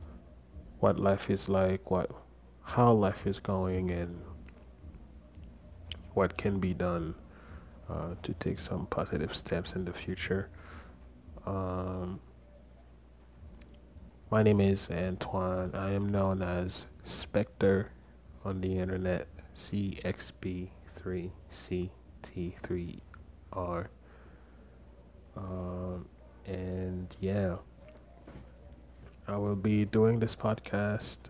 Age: 20-39